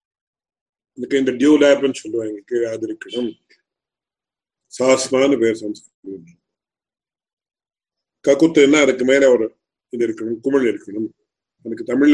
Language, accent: English, Indian